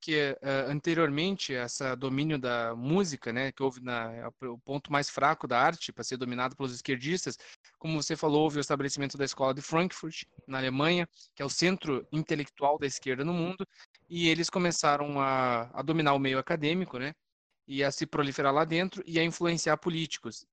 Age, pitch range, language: 20-39, 135-165 Hz, Portuguese